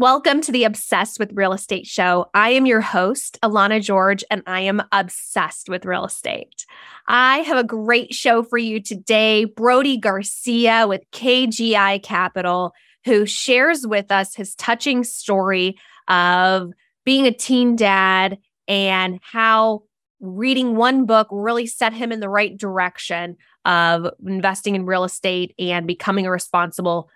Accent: American